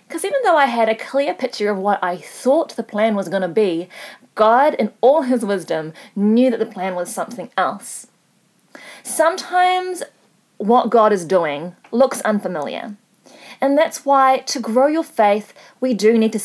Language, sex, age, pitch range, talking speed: English, female, 30-49, 205-275 Hz, 175 wpm